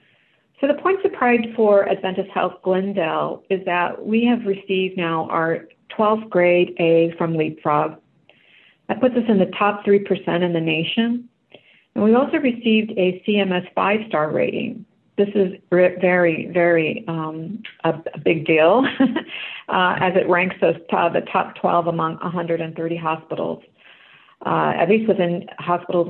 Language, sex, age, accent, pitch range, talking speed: English, female, 50-69, American, 170-200 Hz, 150 wpm